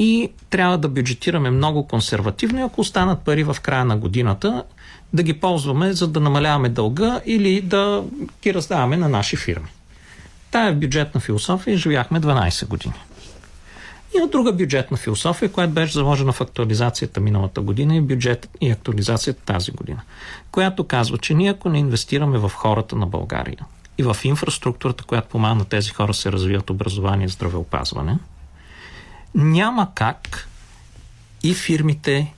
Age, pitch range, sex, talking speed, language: 50-69, 105-155 Hz, male, 150 wpm, Bulgarian